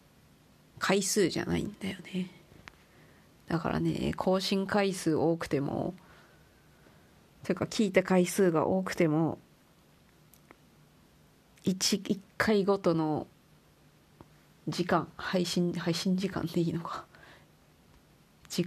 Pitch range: 165-185 Hz